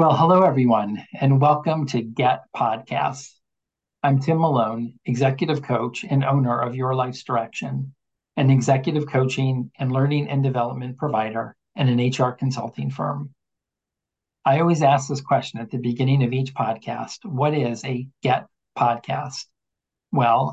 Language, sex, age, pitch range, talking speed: English, male, 50-69, 125-145 Hz, 145 wpm